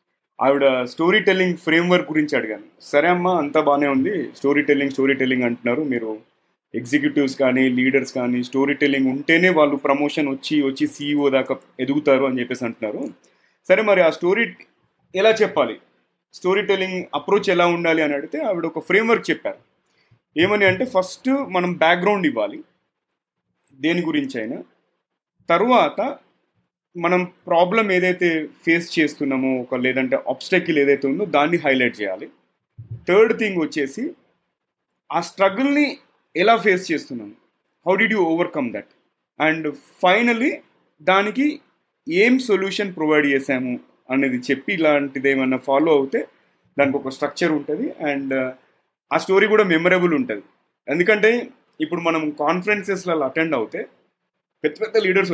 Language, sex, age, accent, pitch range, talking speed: Telugu, male, 30-49, native, 140-185 Hz, 130 wpm